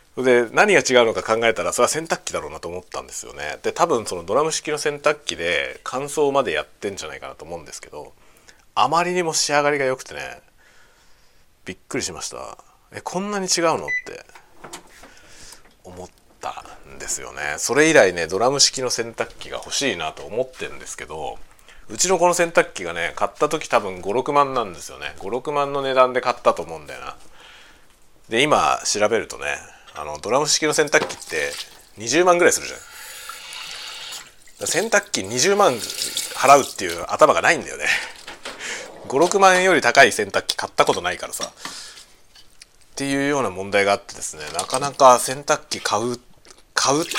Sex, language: male, Japanese